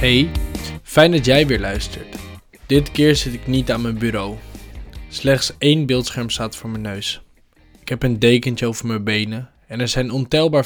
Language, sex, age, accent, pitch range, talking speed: Dutch, male, 20-39, Dutch, 115-140 Hz, 180 wpm